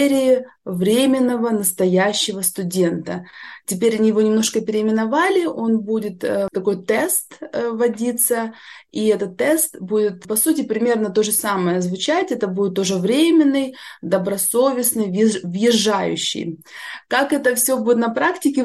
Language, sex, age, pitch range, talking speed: Russian, female, 20-39, 195-240 Hz, 120 wpm